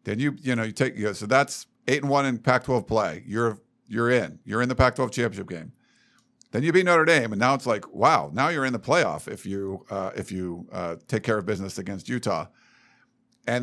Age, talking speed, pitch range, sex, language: 50-69, 225 wpm, 110-145 Hz, male, English